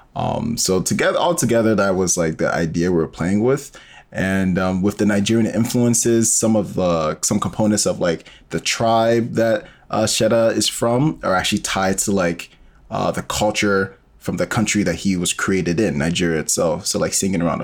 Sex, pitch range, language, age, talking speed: male, 90-115 Hz, English, 20-39, 190 wpm